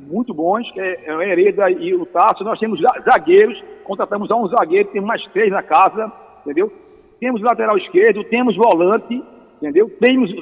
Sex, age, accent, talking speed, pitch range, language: male, 50-69, Brazilian, 160 wpm, 220-315 Hz, Portuguese